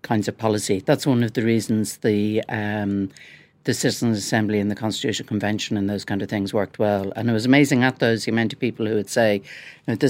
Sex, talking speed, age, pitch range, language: female, 225 wpm, 60-79, 110-140 Hz, English